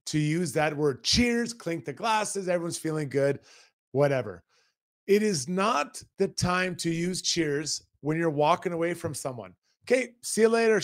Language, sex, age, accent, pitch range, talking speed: English, male, 30-49, American, 165-225 Hz, 165 wpm